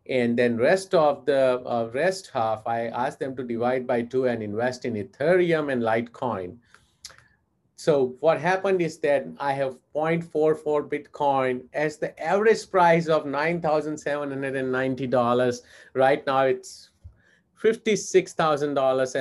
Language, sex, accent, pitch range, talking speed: English, male, Indian, 120-145 Hz, 125 wpm